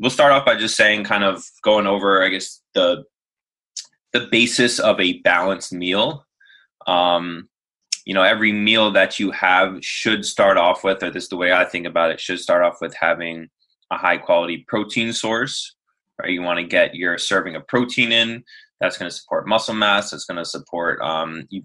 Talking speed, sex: 200 wpm, male